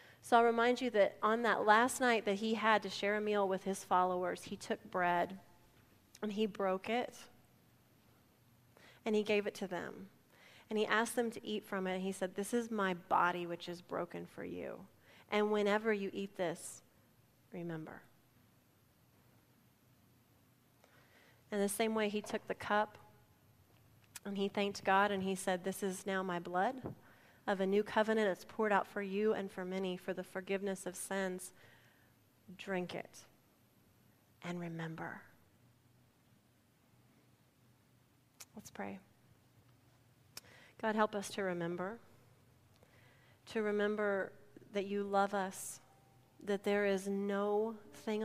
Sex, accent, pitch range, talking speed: female, American, 125-205 Hz, 145 wpm